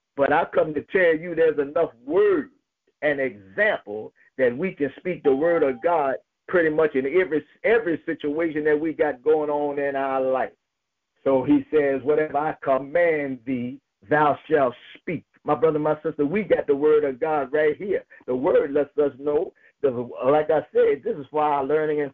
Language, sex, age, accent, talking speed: English, male, 50-69, American, 190 wpm